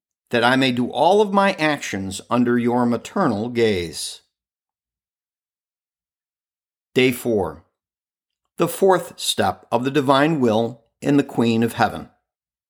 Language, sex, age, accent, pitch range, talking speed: English, male, 50-69, American, 115-160 Hz, 125 wpm